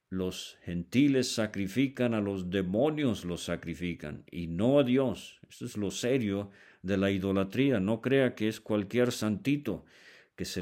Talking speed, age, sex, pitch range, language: 155 wpm, 50-69, male, 90-120 Hz, Spanish